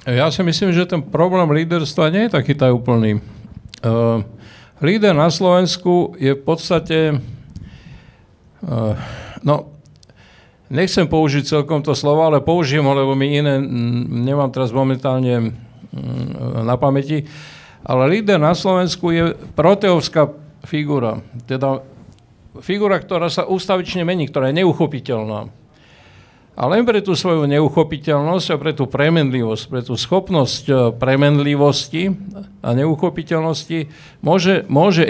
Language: Slovak